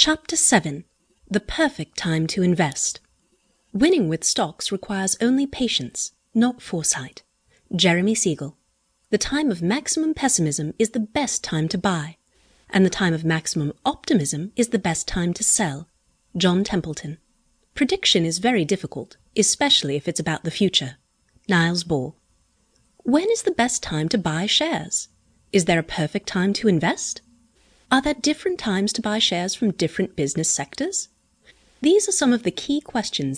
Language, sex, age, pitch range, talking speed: English, female, 30-49, 165-245 Hz, 155 wpm